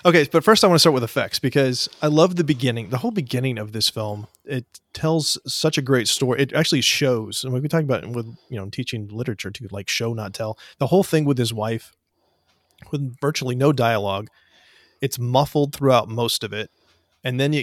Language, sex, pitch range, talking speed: English, male, 110-135 Hz, 210 wpm